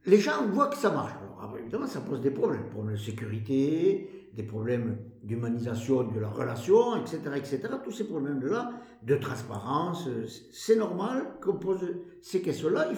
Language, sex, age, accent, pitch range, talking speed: French, male, 50-69, French, 115-155 Hz, 165 wpm